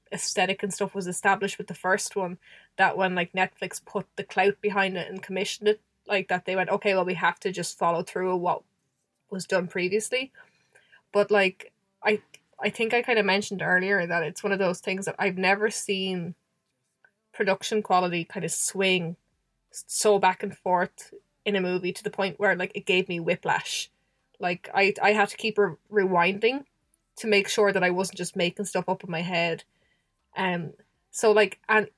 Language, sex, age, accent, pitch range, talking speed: English, female, 20-39, Irish, 185-215 Hz, 190 wpm